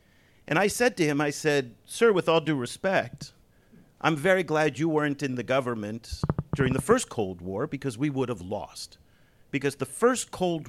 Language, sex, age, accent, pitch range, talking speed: English, male, 50-69, American, 115-155 Hz, 190 wpm